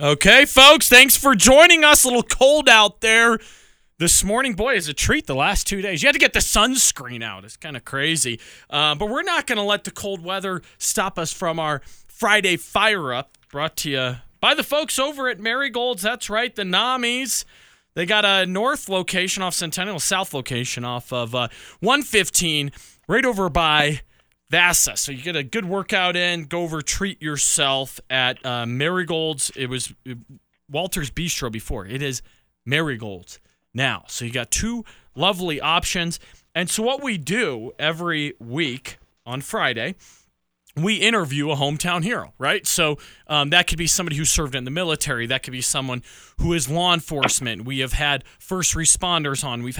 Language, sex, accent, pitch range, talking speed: English, male, American, 135-205 Hz, 180 wpm